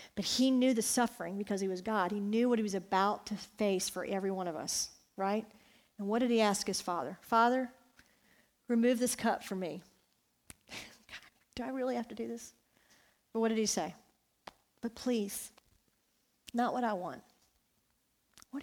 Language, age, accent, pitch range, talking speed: English, 40-59, American, 200-240 Hz, 175 wpm